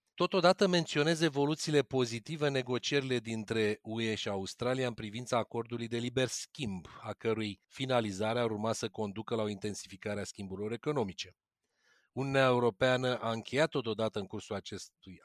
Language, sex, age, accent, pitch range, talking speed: Romanian, male, 40-59, native, 105-135 Hz, 140 wpm